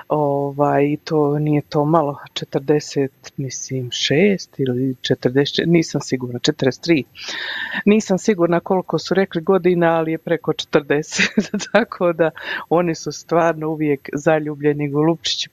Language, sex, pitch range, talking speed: Croatian, female, 145-170 Hz, 125 wpm